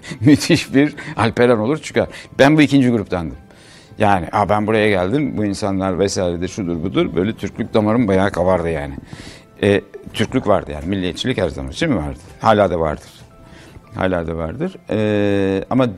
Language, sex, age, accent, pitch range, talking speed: Turkish, male, 60-79, native, 95-120 Hz, 160 wpm